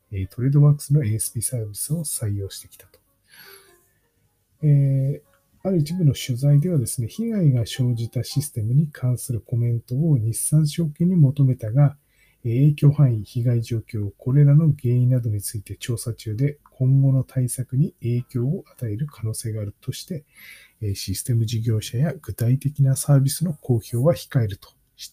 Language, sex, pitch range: Japanese, male, 105-145 Hz